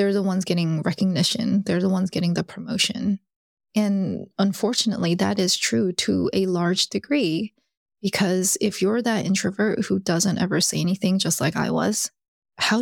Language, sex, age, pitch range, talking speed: English, female, 20-39, 180-210 Hz, 165 wpm